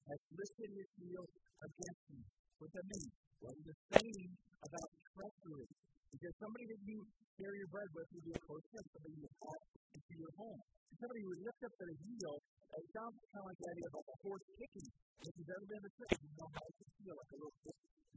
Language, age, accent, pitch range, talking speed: English, 50-69, American, 170-240 Hz, 240 wpm